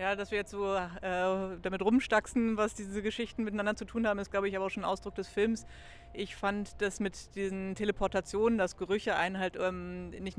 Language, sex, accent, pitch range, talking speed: German, female, German, 170-200 Hz, 210 wpm